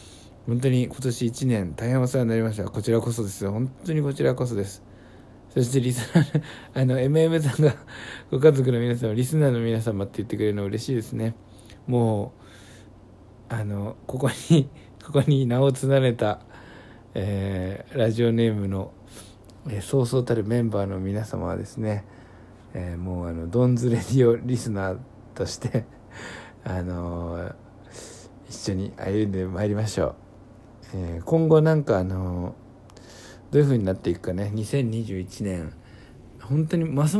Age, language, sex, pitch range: 60-79, Japanese, male, 100-125 Hz